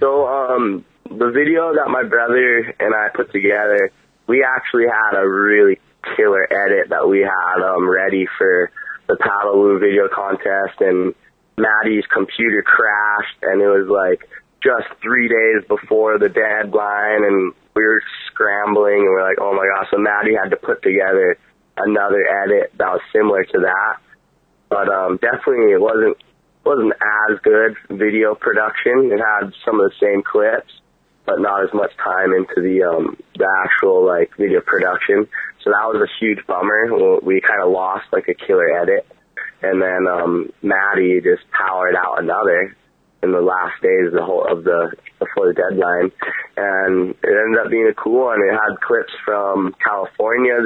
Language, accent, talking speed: English, American, 170 wpm